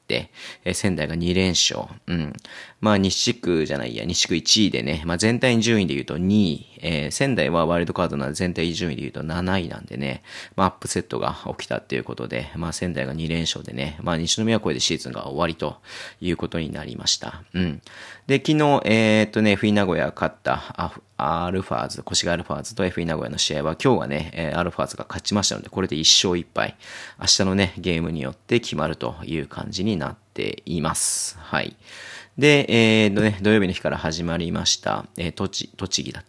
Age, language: 30-49, Japanese